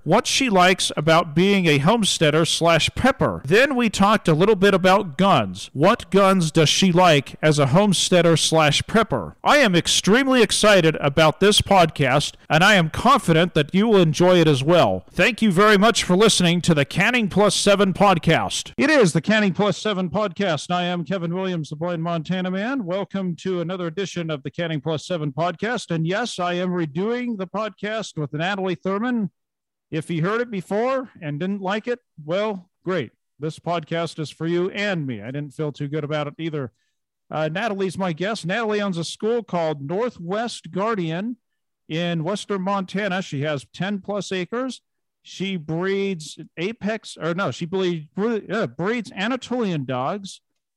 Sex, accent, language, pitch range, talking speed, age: male, American, English, 160-200 Hz, 175 wpm, 50-69